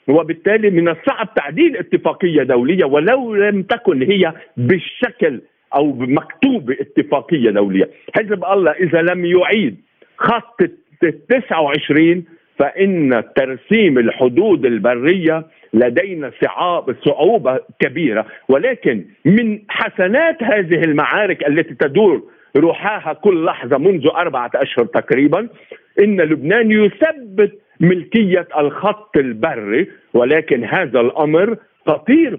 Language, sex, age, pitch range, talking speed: Arabic, male, 50-69, 165-260 Hz, 100 wpm